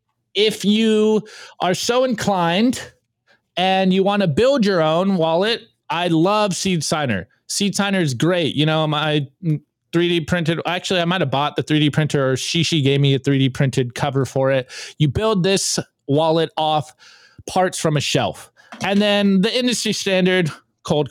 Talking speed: 170 wpm